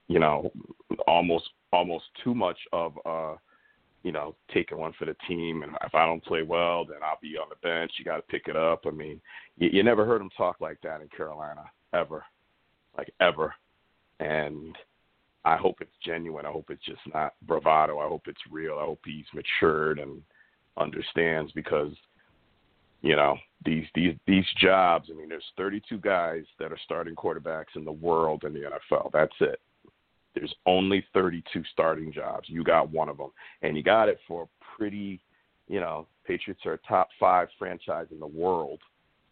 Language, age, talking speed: English, 40-59, 185 wpm